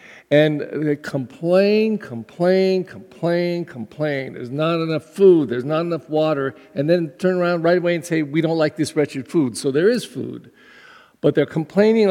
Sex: male